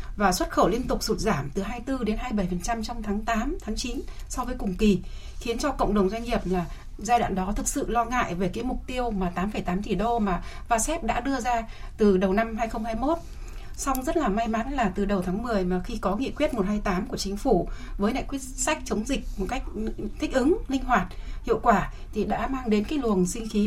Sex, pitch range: female, 205-260 Hz